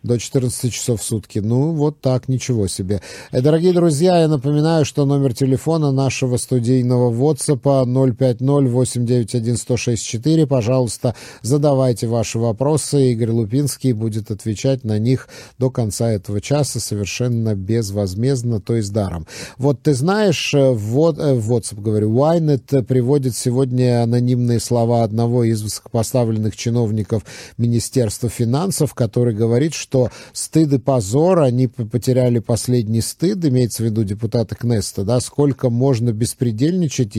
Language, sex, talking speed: Russian, male, 125 wpm